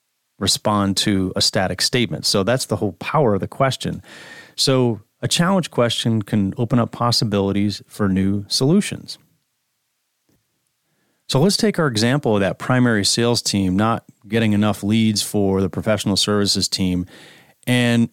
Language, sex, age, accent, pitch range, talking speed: English, male, 30-49, American, 100-130 Hz, 145 wpm